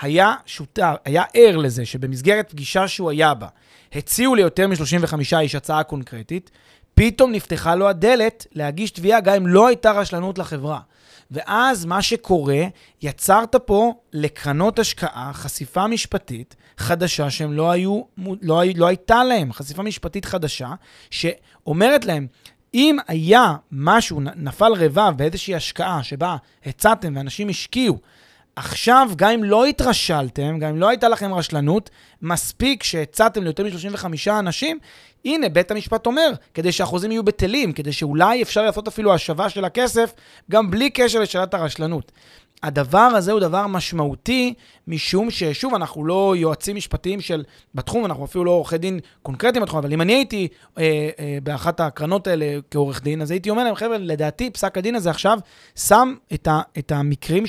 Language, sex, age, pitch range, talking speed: Hebrew, male, 30-49, 155-215 Hz, 150 wpm